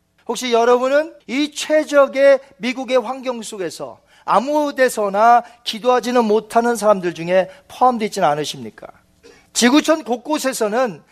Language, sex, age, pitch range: Korean, male, 40-59, 200-270 Hz